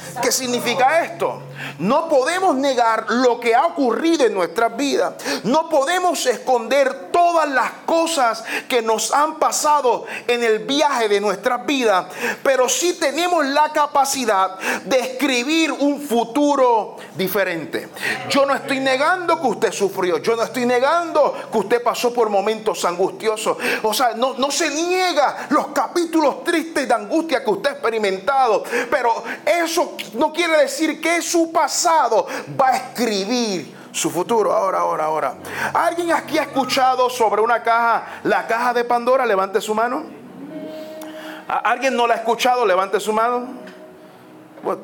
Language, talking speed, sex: Spanish, 150 wpm, male